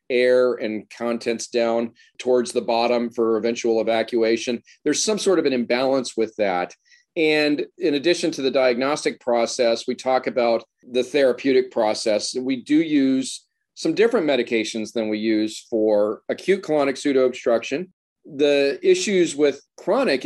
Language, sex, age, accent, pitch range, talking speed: English, male, 40-59, American, 120-150 Hz, 140 wpm